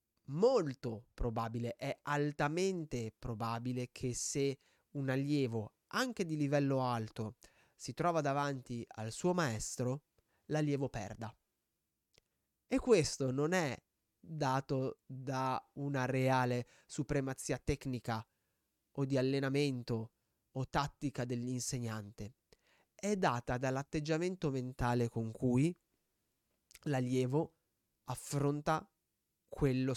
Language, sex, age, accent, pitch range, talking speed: Italian, male, 20-39, native, 125-155 Hz, 90 wpm